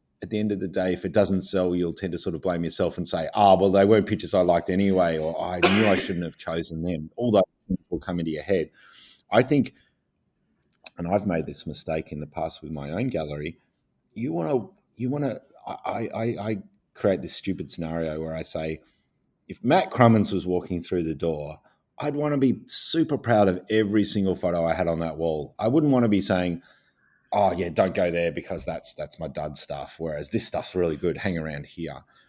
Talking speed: 225 wpm